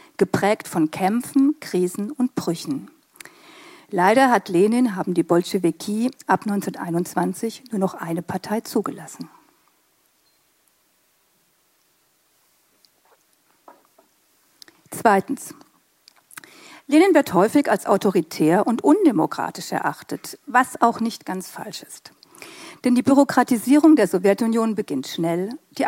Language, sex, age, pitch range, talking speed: German, female, 50-69, 185-265 Hz, 95 wpm